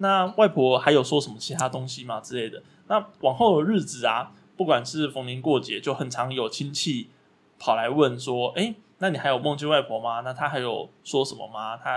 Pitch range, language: 125-155 Hz, Chinese